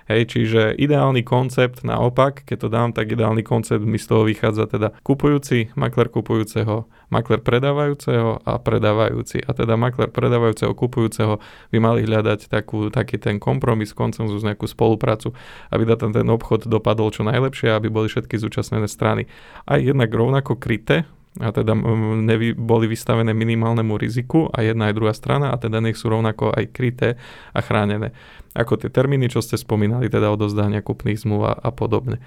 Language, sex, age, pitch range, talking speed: Slovak, male, 20-39, 110-120 Hz, 160 wpm